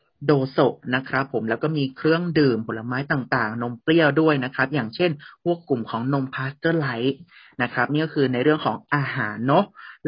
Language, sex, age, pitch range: Thai, male, 30-49, 130-155 Hz